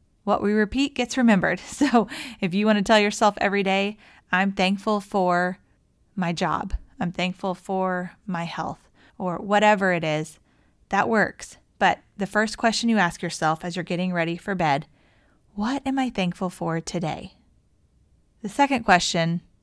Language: English